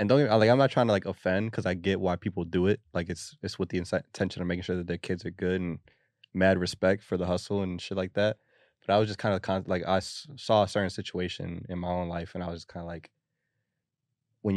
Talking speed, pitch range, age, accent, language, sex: 275 wpm, 90-105 Hz, 20-39, American, English, male